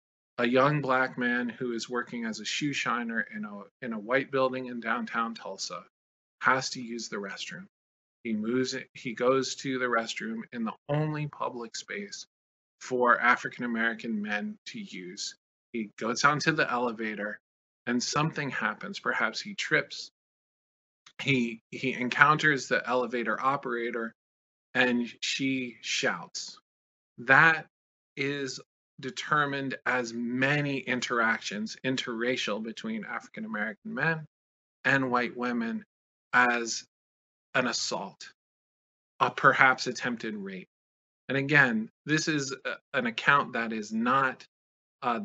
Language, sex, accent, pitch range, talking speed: English, male, American, 115-145 Hz, 125 wpm